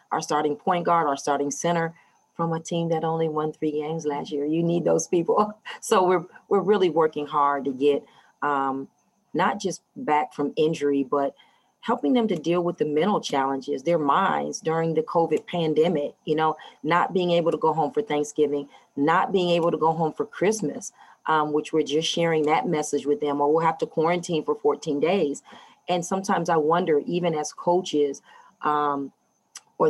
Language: English